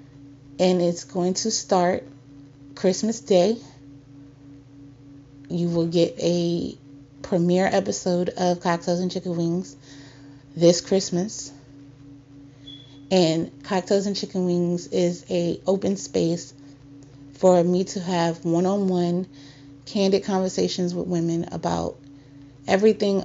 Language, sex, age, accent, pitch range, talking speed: English, female, 30-49, American, 140-190 Hz, 105 wpm